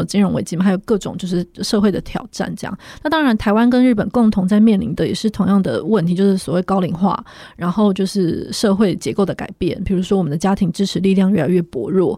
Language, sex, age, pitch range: Chinese, female, 20-39, 190-225 Hz